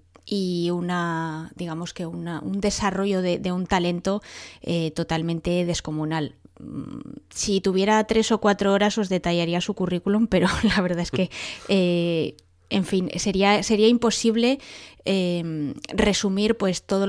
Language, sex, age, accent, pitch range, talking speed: English, female, 20-39, Spanish, 165-195 Hz, 135 wpm